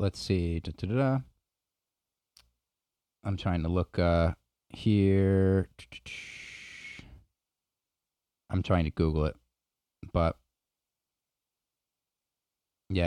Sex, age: male, 30-49